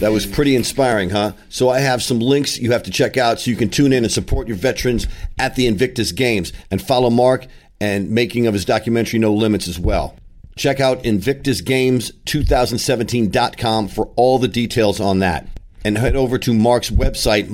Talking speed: 190 wpm